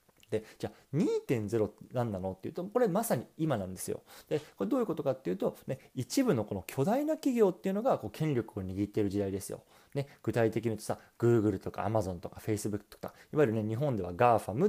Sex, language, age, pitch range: male, Japanese, 20-39, 105-155 Hz